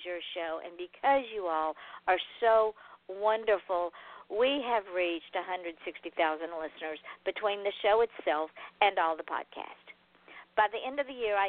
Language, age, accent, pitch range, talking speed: English, 50-69, American, 170-225 Hz, 150 wpm